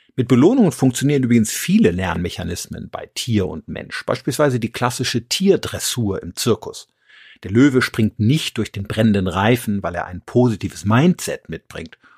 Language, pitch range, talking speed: German, 100-130 Hz, 150 wpm